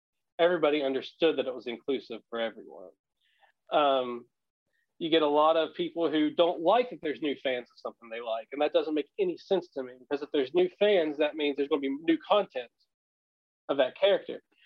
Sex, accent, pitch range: male, American, 140-180 Hz